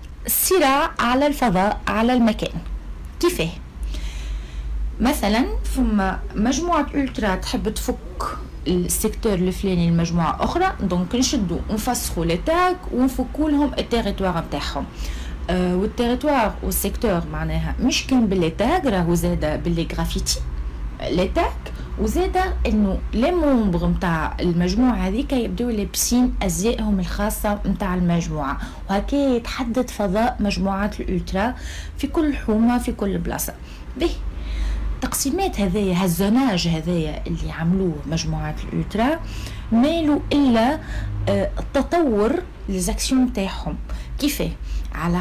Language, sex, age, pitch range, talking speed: Arabic, female, 30-49, 165-250 Hz, 100 wpm